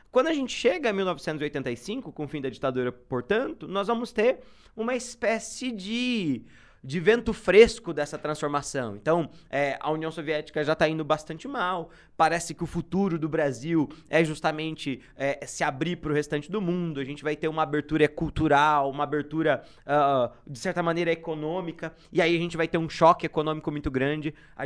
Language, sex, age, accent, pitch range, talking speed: Portuguese, male, 20-39, Brazilian, 145-180 Hz, 175 wpm